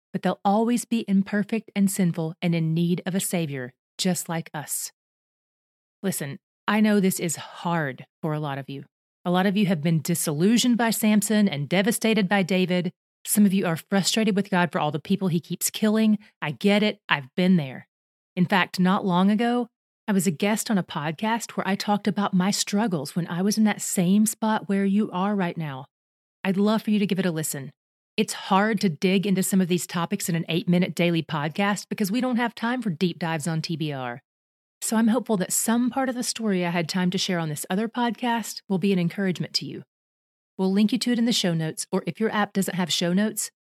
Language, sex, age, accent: English, female, 30-49, American